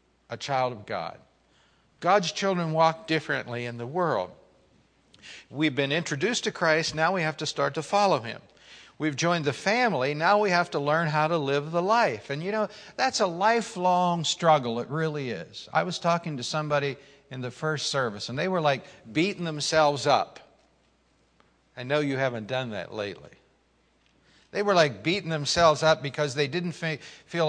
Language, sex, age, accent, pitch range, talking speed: English, male, 60-79, American, 135-170 Hz, 175 wpm